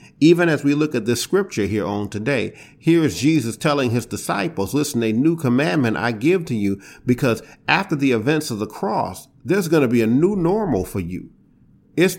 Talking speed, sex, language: 200 wpm, male, English